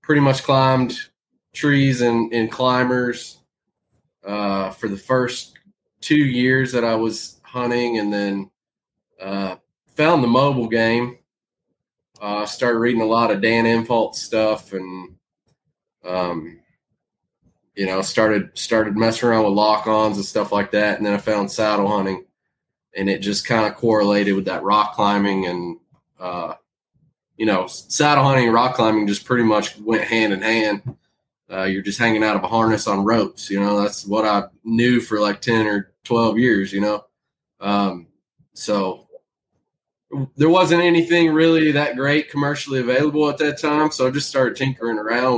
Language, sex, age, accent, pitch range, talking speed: English, male, 20-39, American, 105-130 Hz, 165 wpm